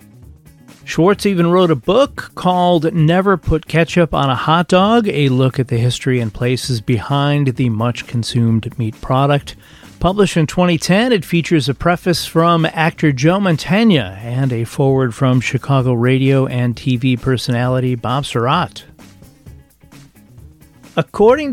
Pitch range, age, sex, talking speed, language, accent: 125-170 Hz, 40-59, male, 135 wpm, English, American